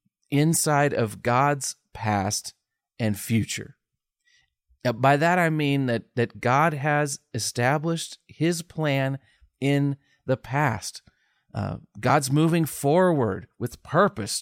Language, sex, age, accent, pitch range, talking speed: English, male, 40-59, American, 110-150 Hz, 110 wpm